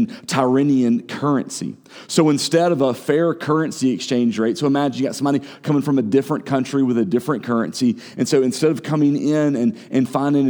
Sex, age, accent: male, 40-59, American